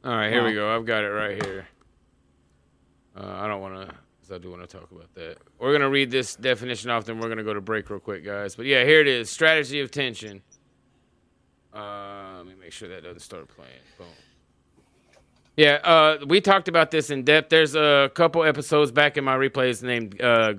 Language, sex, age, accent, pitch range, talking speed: English, male, 30-49, American, 115-150 Hz, 220 wpm